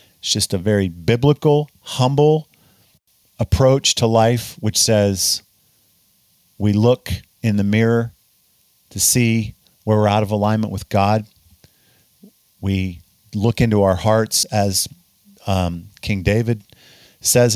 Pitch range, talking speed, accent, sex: 105-140 Hz, 120 wpm, American, male